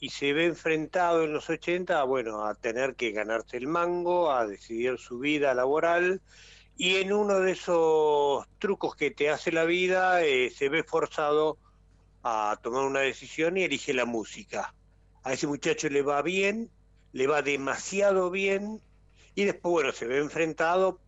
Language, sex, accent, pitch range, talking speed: Spanish, male, Argentinian, 115-175 Hz, 165 wpm